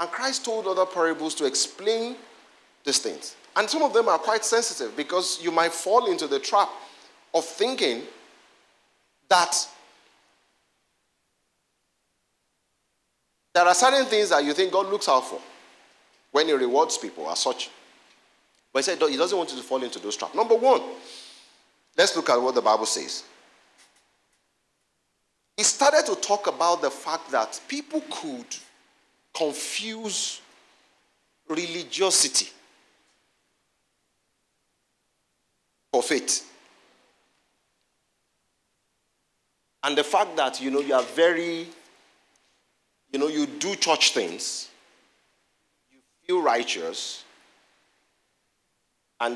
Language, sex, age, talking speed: English, male, 50-69, 120 wpm